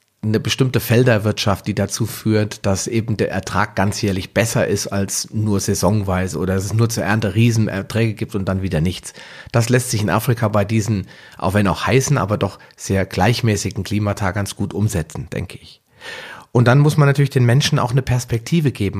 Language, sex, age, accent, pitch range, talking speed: German, male, 40-59, German, 100-120 Hz, 185 wpm